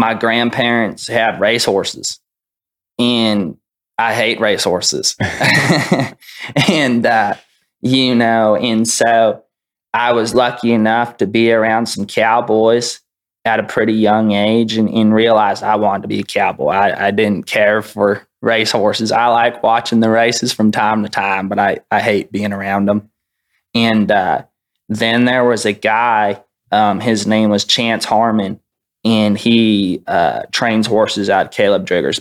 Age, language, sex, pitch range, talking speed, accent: 20-39, English, male, 105-115 Hz, 150 wpm, American